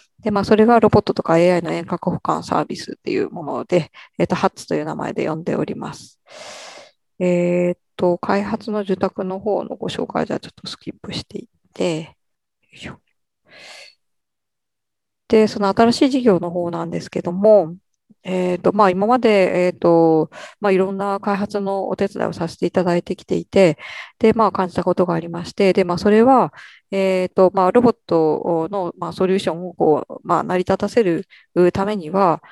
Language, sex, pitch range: Japanese, female, 175-205 Hz